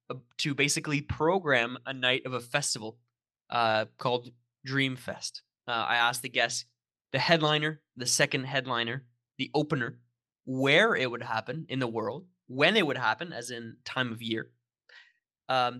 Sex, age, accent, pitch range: male, 20-39, American, 120-140 Hz